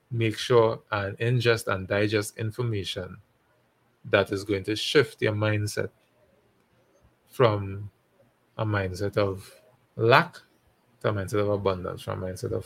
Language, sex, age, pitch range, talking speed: English, male, 20-39, 105-125 Hz, 135 wpm